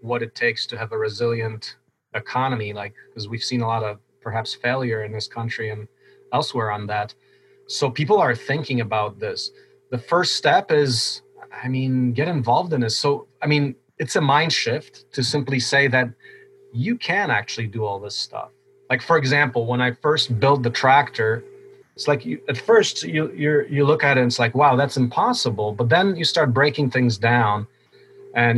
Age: 30-49